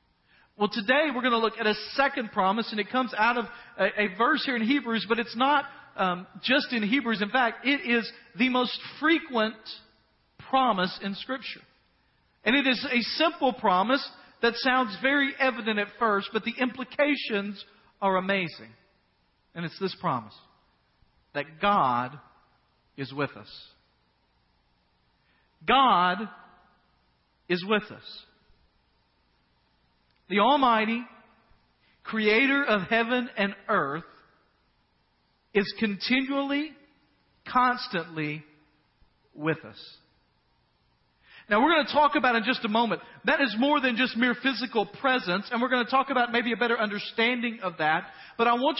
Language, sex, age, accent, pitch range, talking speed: English, male, 50-69, American, 200-260 Hz, 140 wpm